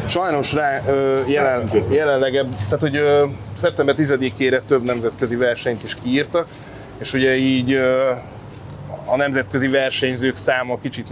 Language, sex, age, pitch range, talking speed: Hungarian, male, 20-39, 120-135 Hz, 110 wpm